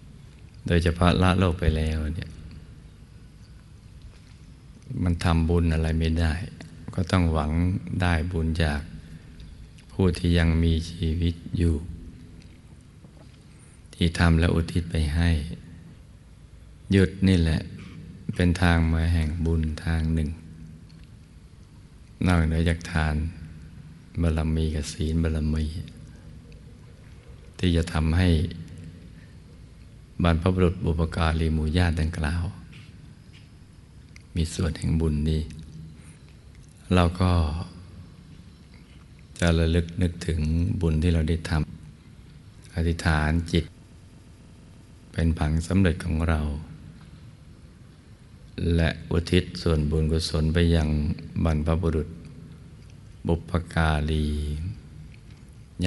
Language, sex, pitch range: Thai, male, 80-85 Hz